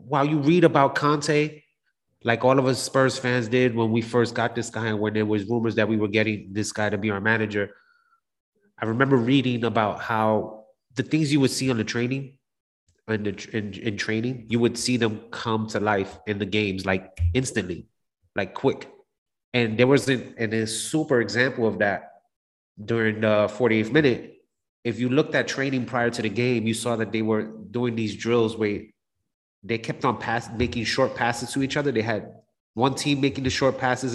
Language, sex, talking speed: English, male, 200 wpm